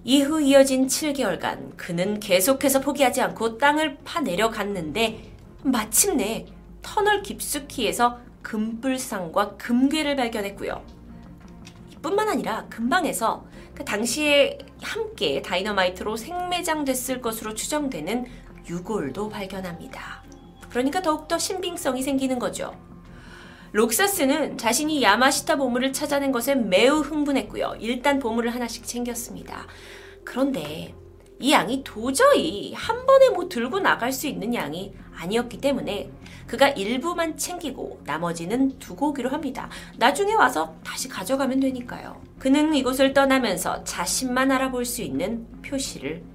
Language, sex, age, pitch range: Korean, female, 30-49, 220-285 Hz